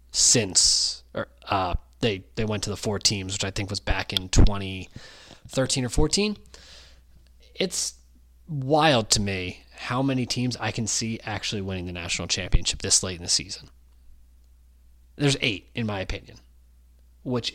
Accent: American